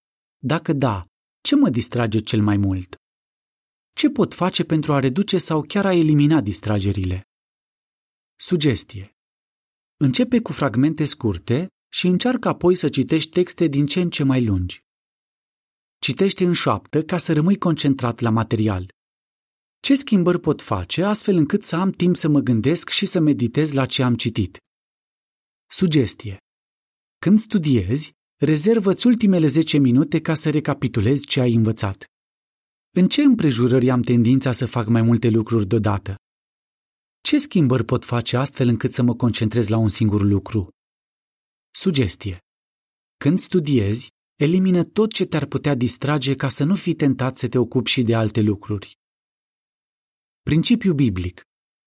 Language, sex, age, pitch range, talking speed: Romanian, male, 30-49, 115-170 Hz, 145 wpm